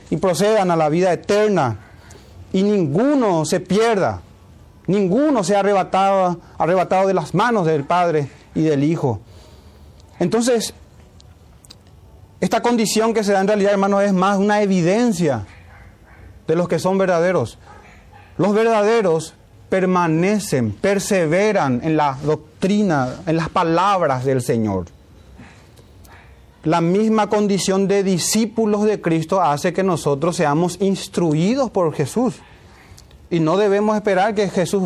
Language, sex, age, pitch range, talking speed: Spanish, male, 40-59, 135-210 Hz, 125 wpm